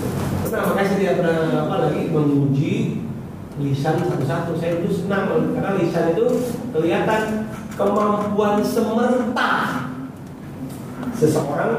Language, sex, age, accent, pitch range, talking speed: Indonesian, male, 40-59, native, 135-220 Hz, 95 wpm